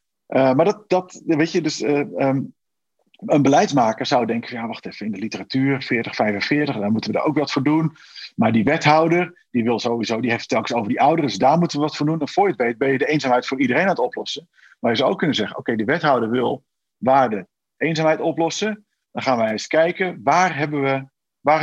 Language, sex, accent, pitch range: Dutch, male, Dutch, 125-160 Hz